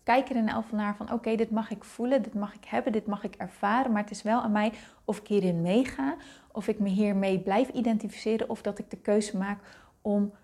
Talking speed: 255 wpm